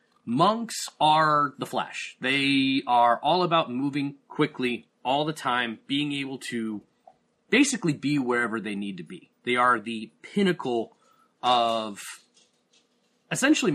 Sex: male